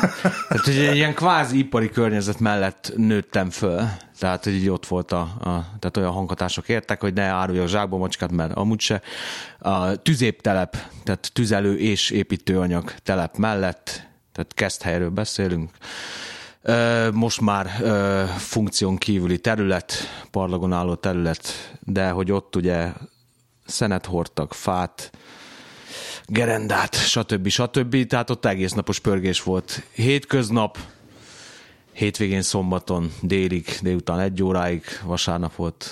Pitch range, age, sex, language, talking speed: 90-110 Hz, 30-49, male, Hungarian, 120 wpm